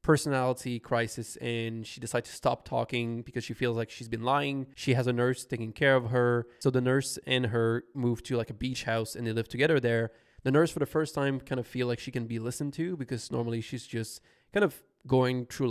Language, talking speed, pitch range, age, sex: English, 235 wpm, 115-140 Hz, 20-39, male